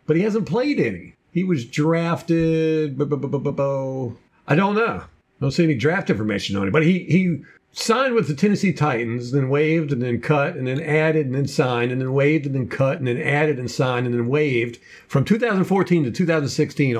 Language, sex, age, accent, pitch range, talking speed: English, male, 50-69, American, 130-170 Hz, 200 wpm